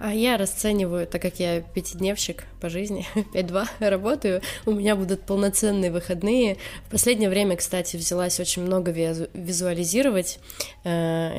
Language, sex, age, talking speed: Russian, female, 20-39, 130 wpm